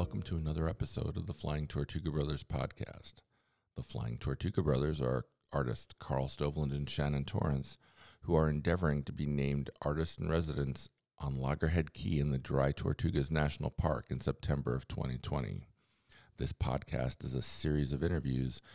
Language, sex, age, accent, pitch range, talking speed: English, male, 40-59, American, 70-85 Hz, 160 wpm